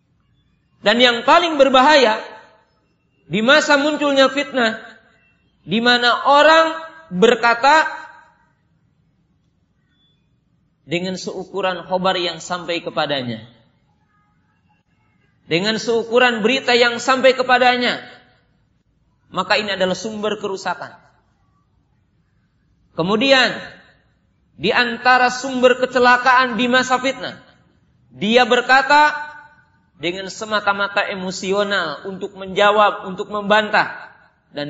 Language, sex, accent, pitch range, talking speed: Indonesian, male, native, 185-270 Hz, 80 wpm